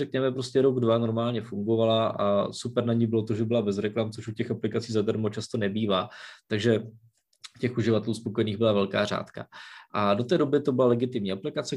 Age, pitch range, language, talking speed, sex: 20-39, 110-130 Hz, Czech, 200 wpm, male